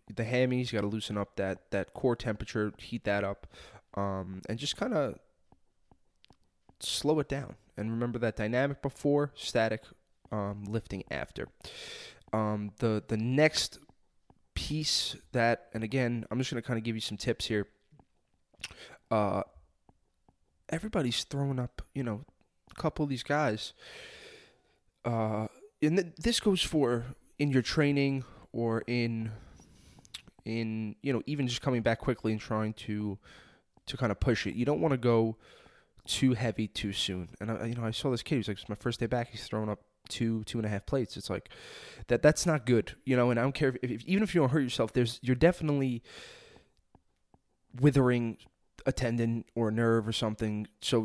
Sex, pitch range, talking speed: male, 105-135 Hz, 180 wpm